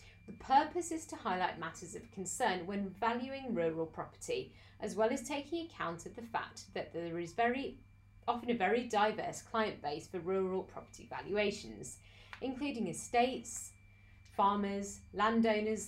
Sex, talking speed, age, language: female, 145 wpm, 30-49, English